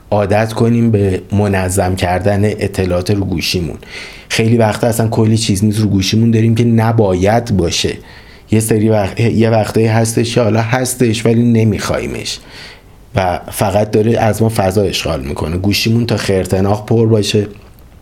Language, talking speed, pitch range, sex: Persian, 145 wpm, 95-110 Hz, male